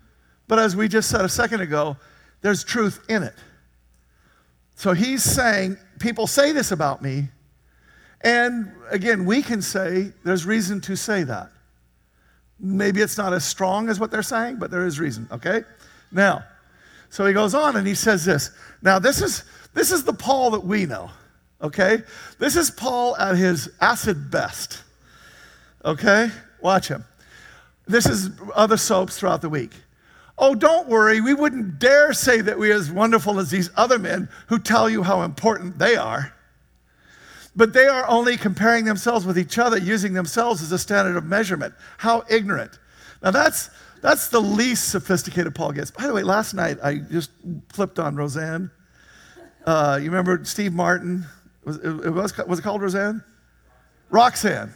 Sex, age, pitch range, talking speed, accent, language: male, 50-69, 170-225 Hz, 165 wpm, American, English